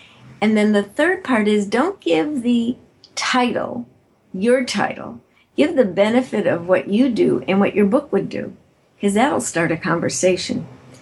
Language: English